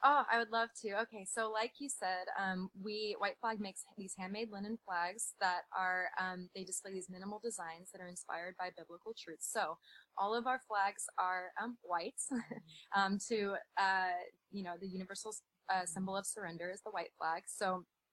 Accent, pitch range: American, 180-200 Hz